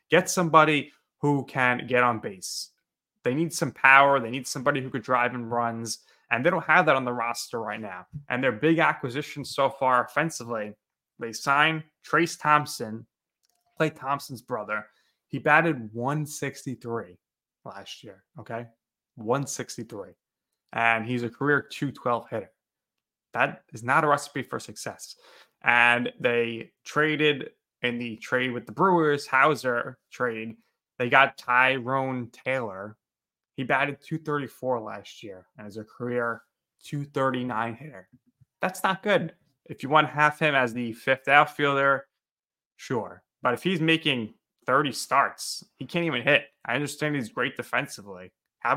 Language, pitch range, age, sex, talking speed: English, 120-145 Hz, 20-39, male, 145 wpm